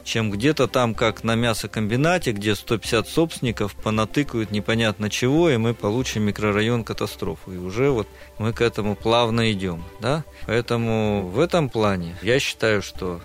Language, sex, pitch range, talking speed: Russian, male, 105-130 Hz, 150 wpm